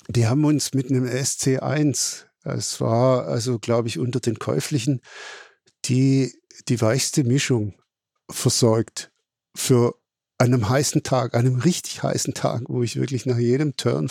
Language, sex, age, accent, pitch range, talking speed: German, male, 50-69, German, 120-145 Hz, 140 wpm